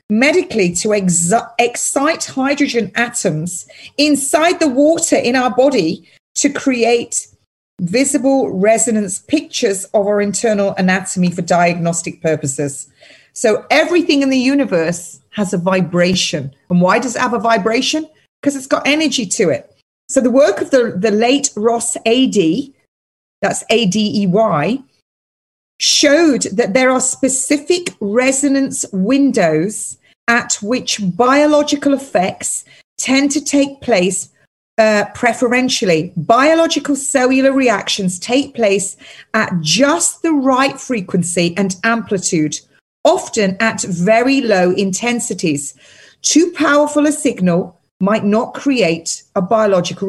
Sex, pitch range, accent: female, 195-275 Hz, British